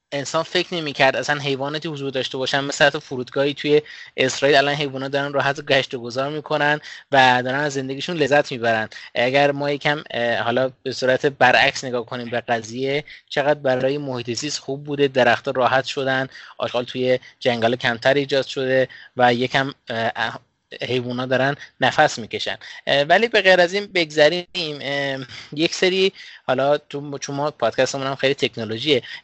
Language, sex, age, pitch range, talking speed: Persian, male, 20-39, 125-145 Hz, 150 wpm